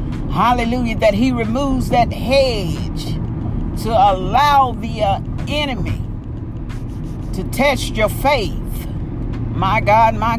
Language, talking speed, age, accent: English, 105 wpm, 40-59, American